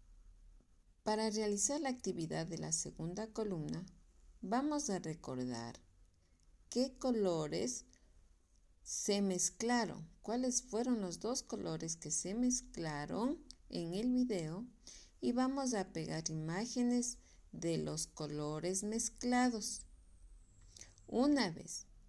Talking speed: 100 wpm